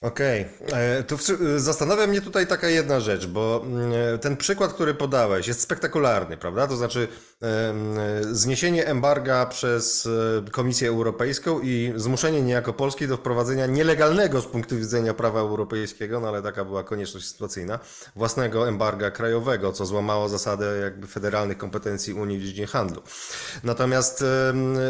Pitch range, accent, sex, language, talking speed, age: 110-140 Hz, native, male, Polish, 130 wpm, 30-49